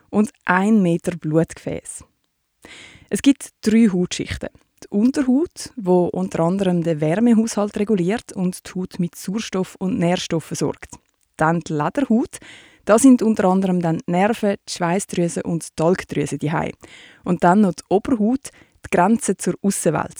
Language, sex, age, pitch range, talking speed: German, female, 20-39, 170-220 Hz, 145 wpm